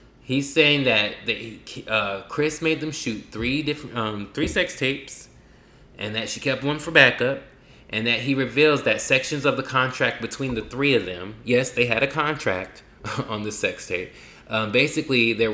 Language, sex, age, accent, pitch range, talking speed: English, male, 20-39, American, 105-130 Hz, 185 wpm